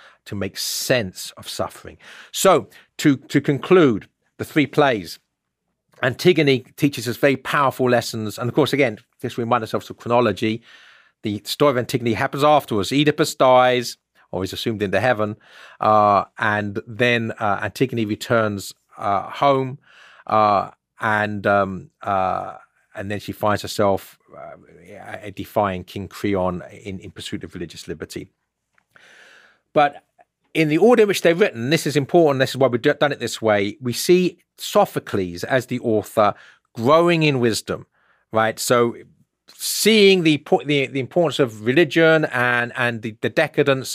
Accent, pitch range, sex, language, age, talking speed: British, 110-150 Hz, male, English, 40-59, 150 wpm